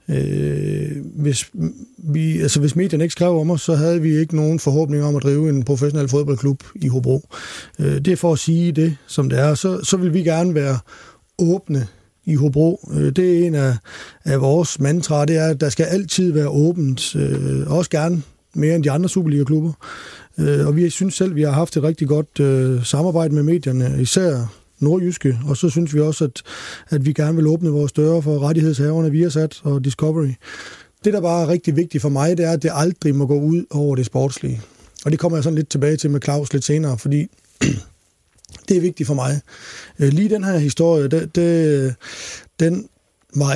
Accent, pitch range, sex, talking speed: native, 140-165 Hz, male, 200 wpm